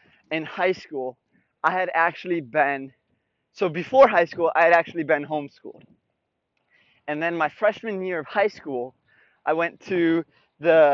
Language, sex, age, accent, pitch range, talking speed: English, male, 20-39, American, 150-190 Hz, 155 wpm